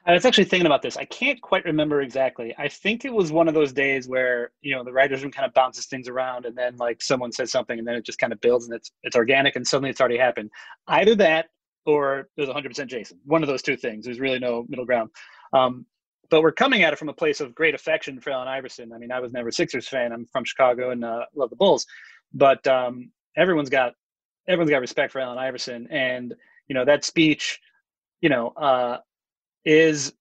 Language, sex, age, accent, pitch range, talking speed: English, male, 30-49, American, 125-160 Hz, 240 wpm